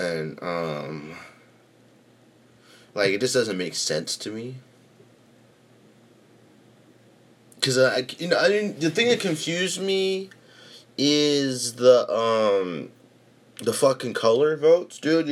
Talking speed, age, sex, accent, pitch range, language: 110 wpm, 30-49, male, American, 120-180 Hz, English